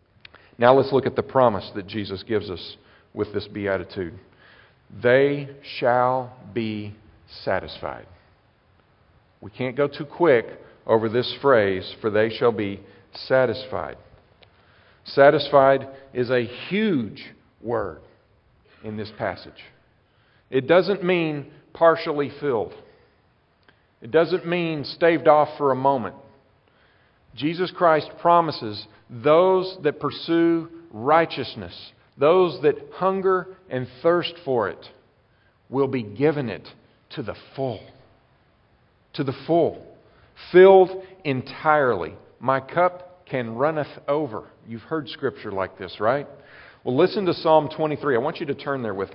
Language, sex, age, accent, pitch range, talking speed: English, male, 50-69, American, 115-155 Hz, 120 wpm